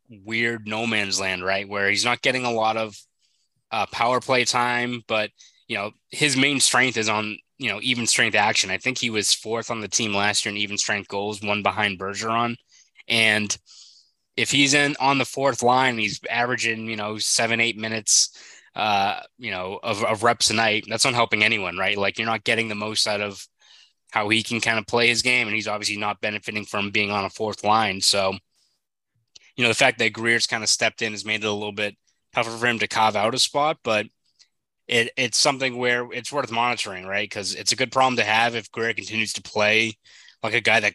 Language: English